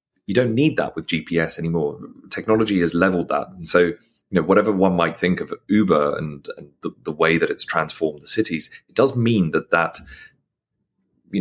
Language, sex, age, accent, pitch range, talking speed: English, male, 30-49, British, 80-105 Hz, 195 wpm